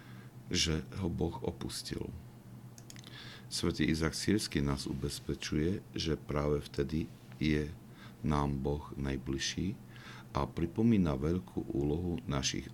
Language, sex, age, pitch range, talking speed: Slovak, male, 60-79, 65-85 Hz, 100 wpm